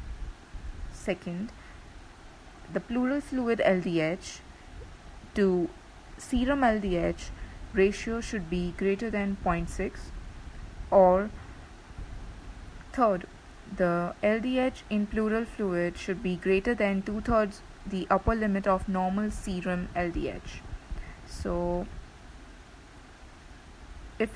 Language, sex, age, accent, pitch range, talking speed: English, female, 30-49, Indian, 165-205 Hz, 90 wpm